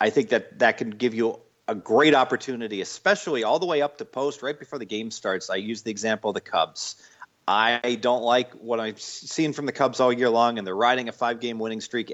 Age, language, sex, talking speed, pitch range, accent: 40-59, English, male, 235 wpm, 115-145 Hz, American